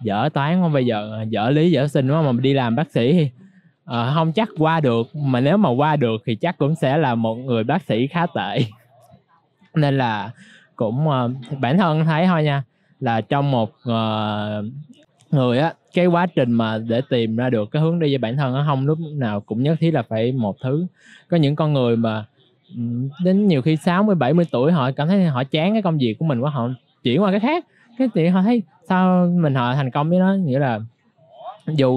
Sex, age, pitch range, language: male, 20-39, 120-165 Hz, Vietnamese